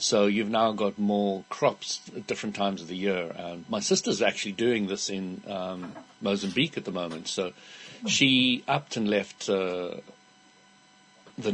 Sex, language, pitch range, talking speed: male, English, 95-110 Hz, 155 wpm